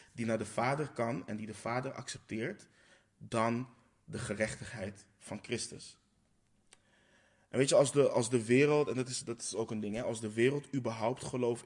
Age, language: 20-39, Dutch